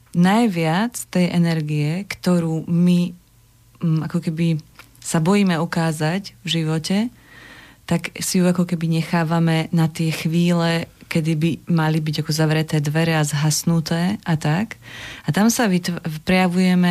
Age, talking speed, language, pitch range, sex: 30-49, 130 wpm, Slovak, 155-180 Hz, female